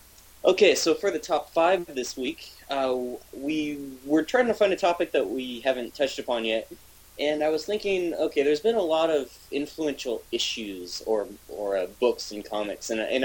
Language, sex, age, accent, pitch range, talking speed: English, male, 20-39, American, 105-140 Hz, 190 wpm